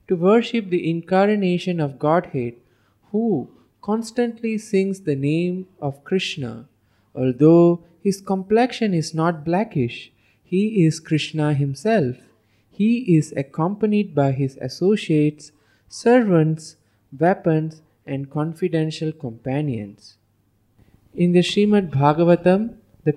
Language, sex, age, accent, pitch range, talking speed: English, male, 20-39, Indian, 130-190 Hz, 100 wpm